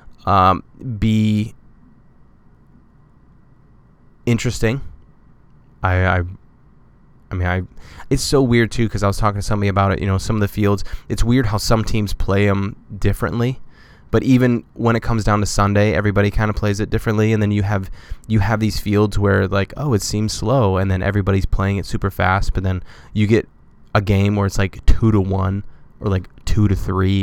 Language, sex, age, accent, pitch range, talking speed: English, male, 20-39, American, 95-110 Hz, 190 wpm